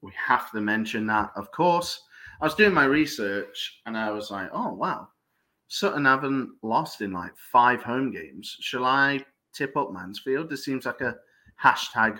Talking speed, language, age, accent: 175 wpm, English, 30-49, British